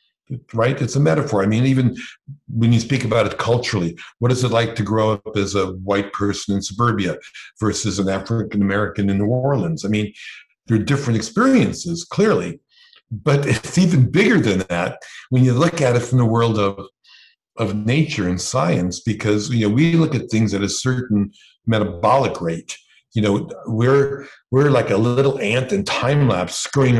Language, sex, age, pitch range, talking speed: English, male, 60-79, 105-135 Hz, 180 wpm